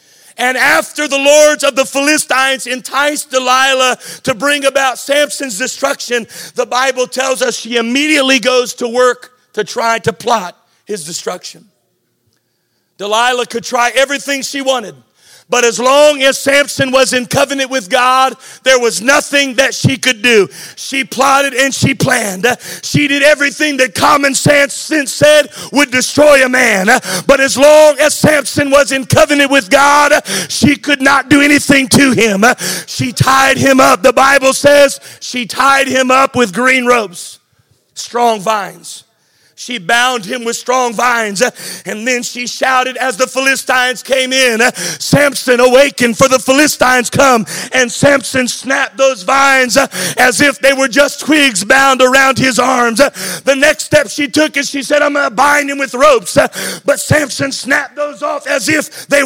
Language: English